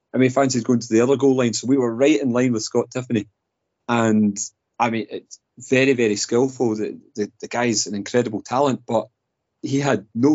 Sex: male